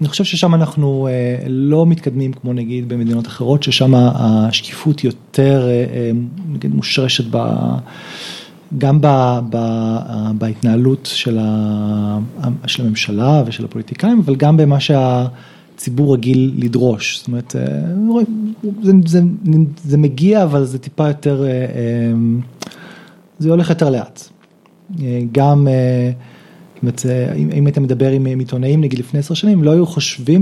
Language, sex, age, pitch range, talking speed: Hebrew, male, 30-49, 125-160 Hz, 110 wpm